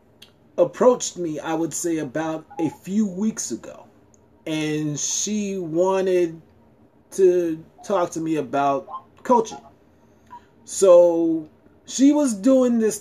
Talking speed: 110 wpm